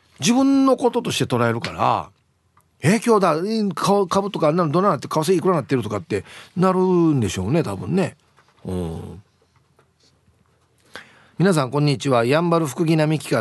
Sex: male